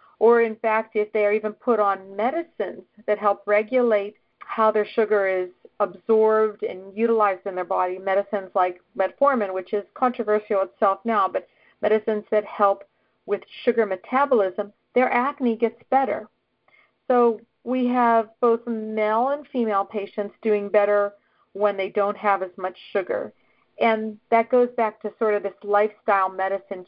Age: 50-69